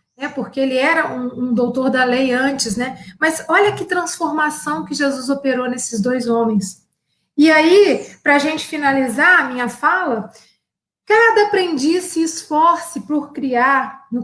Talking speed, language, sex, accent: 150 wpm, Portuguese, female, Brazilian